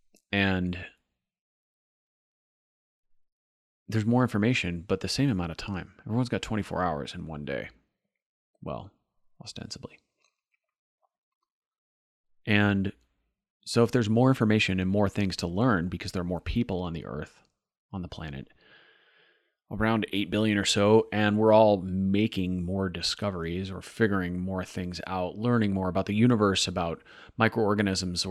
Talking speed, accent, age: 135 wpm, American, 30-49